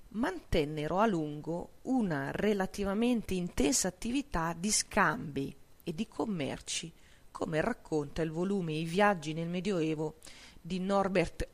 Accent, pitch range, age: native, 155-205 Hz, 40-59